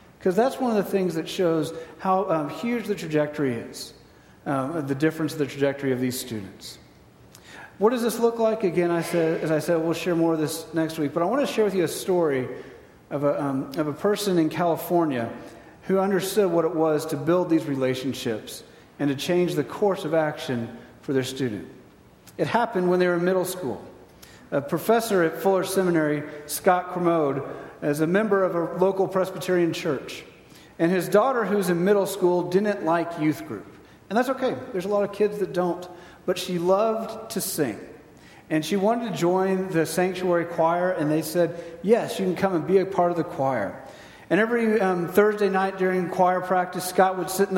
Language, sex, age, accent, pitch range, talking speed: English, male, 40-59, American, 150-190 Hz, 200 wpm